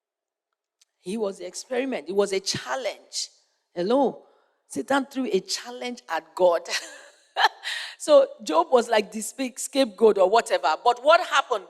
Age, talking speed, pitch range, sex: 40-59, 140 wpm, 215-330 Hz, female